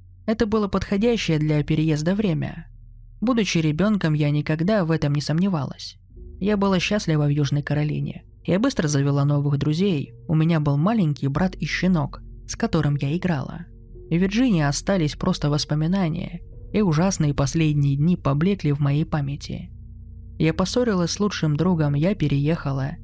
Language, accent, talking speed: Russian, native, 145 wpm